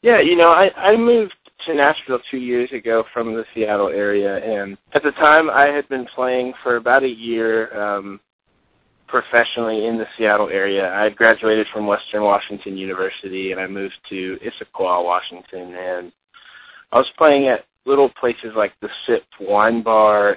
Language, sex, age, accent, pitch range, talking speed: English, male, 20-39, American, 100-120 Hz, 170 wpm